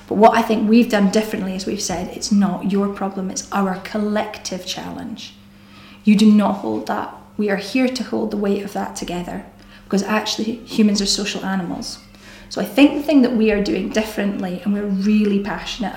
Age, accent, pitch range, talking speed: 30-49, British, 185-220 Hz, 195 wpm